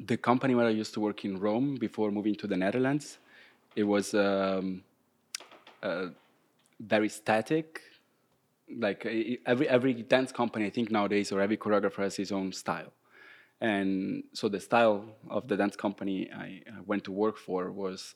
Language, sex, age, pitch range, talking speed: Dutch, male, 20-39, 95-110 Hz, 170 wpm